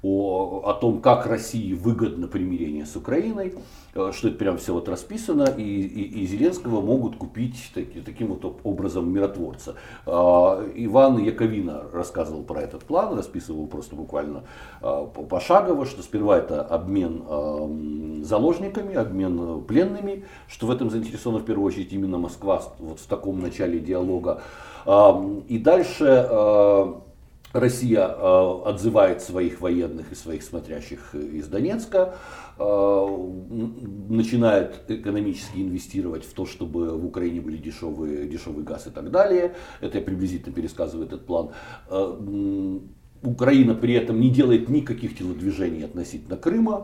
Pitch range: 90-125 Hz